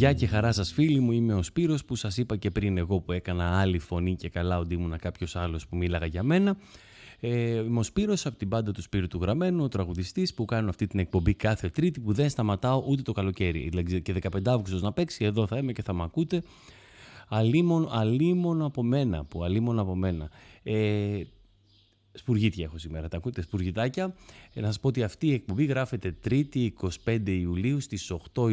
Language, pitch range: Greek, 95-125 Hz